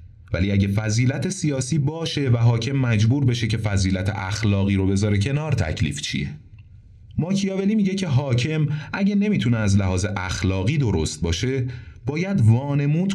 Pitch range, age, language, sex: 100-135 Hz, 30-49, Persian, male